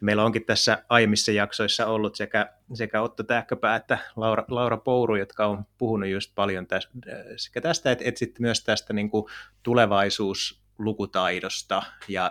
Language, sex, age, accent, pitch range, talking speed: Finnish, male, 30-49, native, 100-120 Hz, 135 wpm